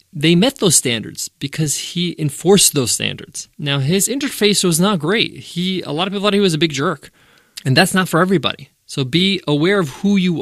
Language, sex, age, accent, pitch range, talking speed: English, male, 20-39, American, 140-190 Hz, 215 wpm